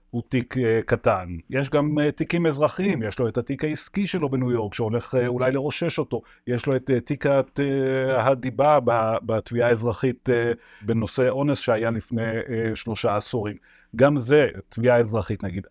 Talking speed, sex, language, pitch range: 140 wpm, male, Hebrew, 115-145 Hz